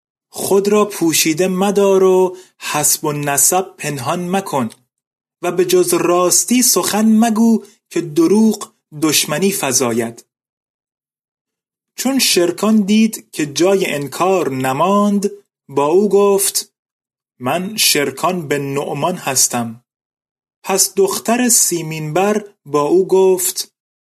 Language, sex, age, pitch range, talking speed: Persian, male, 30-49, 145-200 Hz, 100 wpm